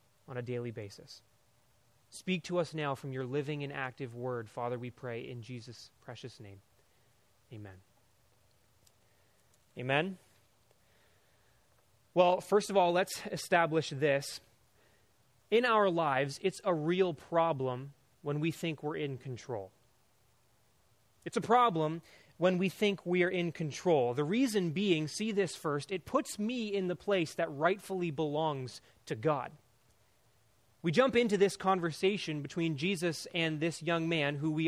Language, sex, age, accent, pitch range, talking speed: English, male, 30-49, American, 125-180 Hz, 145 wpm